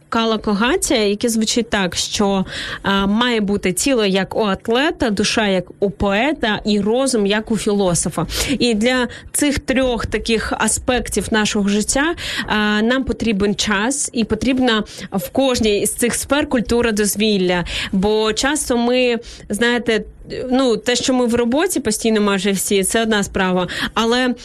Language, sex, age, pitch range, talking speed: Ukrainian, female, 20-39, 210-245 Hz, 145 wpm